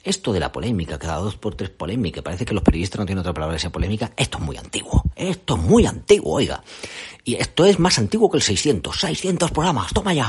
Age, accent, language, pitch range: 40-59, Spanish, Spanish, 85-110 Hz